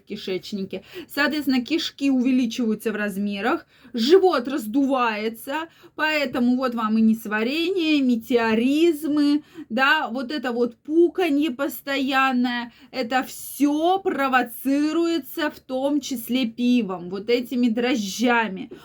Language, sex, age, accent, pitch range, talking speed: Russian, female, 20-39, native, 230-285 Hz, 95 wpm